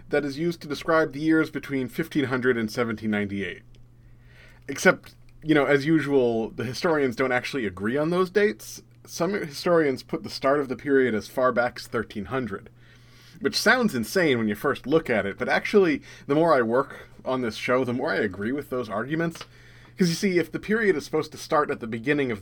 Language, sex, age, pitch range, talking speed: English, male, 30-49, 110-140 Hz, 205 wpm